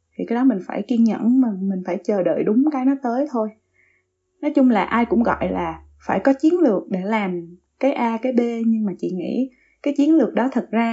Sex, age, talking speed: female, 20-39, 240 wpm